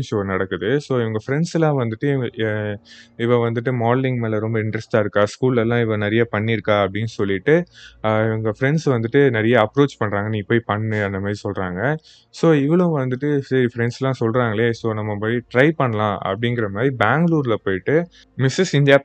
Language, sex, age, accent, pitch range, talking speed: Tamil, male, 20-39, native, 110-135 Hz, 140 wpm